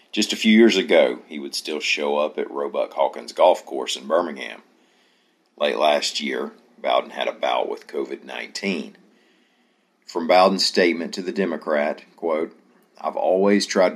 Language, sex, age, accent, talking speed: English, male, 50-69, American, 150 wpm